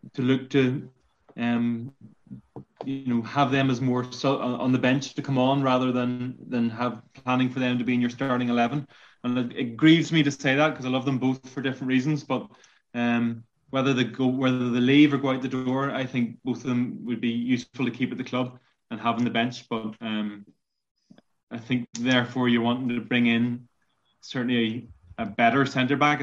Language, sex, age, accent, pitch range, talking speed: English, male, 20-39, Irish, 125-140 Hz, 210 wpm